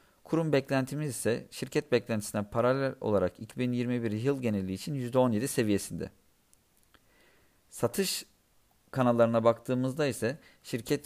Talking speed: 100 wpm